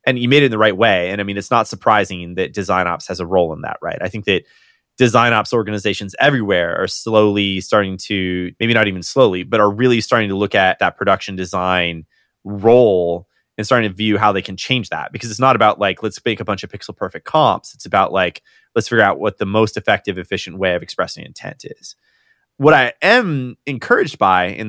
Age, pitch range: 30-49, 95-120 Hz